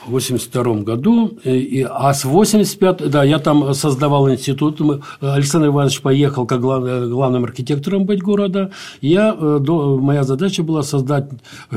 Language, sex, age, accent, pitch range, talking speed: Russian, male, 60-79, native, 120-160 Hz, 155 wpm